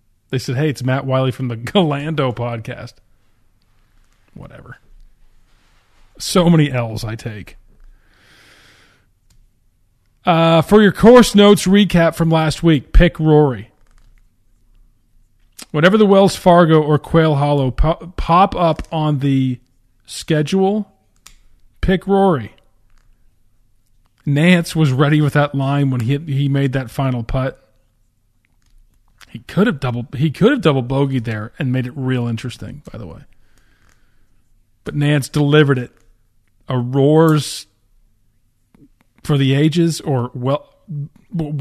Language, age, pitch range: English, 40-59, 110-155 Hz